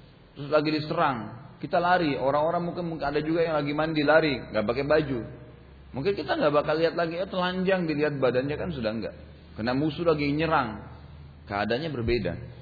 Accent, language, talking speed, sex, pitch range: Indonesian, English, 170 wpm, male, 110-150 Hz